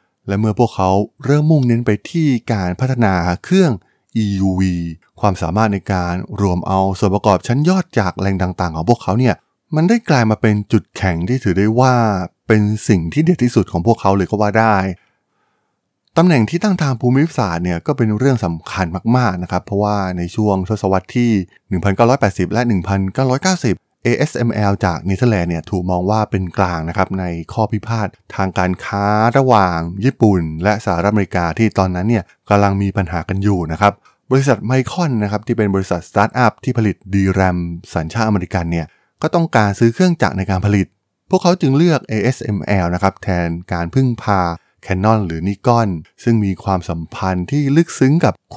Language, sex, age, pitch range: Thai, male, 20-39, 95-120 Hz